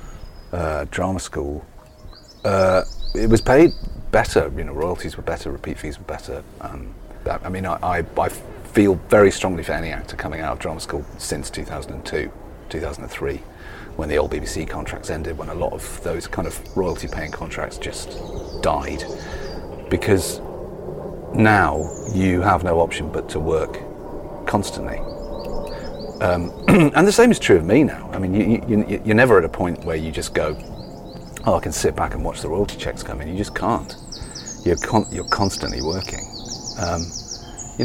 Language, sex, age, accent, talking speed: English, male, 40-59, British, 175 wpm